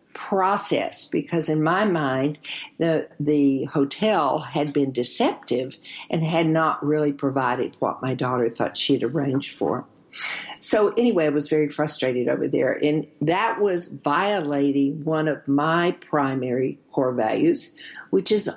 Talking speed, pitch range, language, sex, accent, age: 140 wpm, 135-160 Hz, English, female, American, 60-79